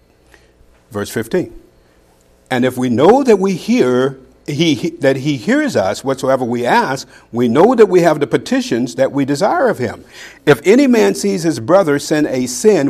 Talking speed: 180 wpm